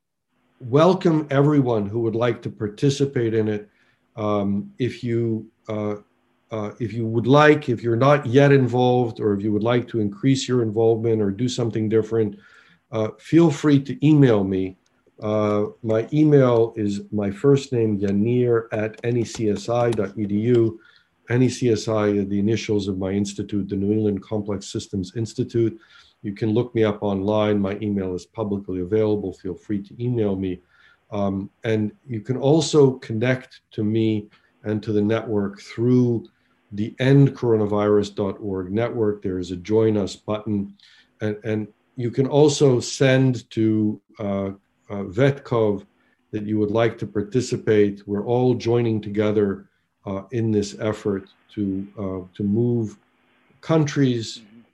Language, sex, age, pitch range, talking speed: Swedish, male, 50-69, 105-120 Hz, 145 wpm